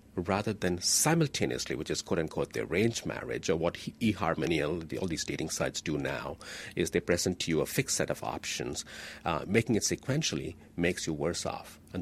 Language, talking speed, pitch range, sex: English, 200 wpm, 90-120 Hz, male